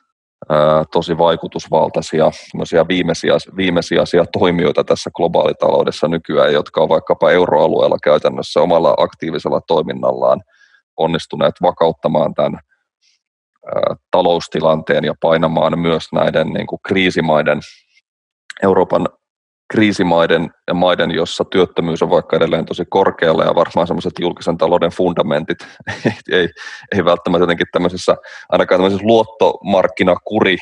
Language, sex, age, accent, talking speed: Finnish, male, 20-39, native, 100 wpm